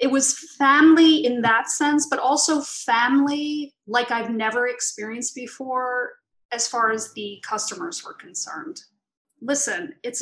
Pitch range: 210-275 Hz